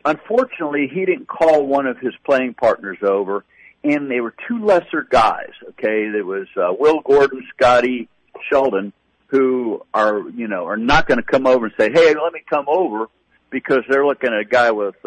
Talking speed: 190 wpm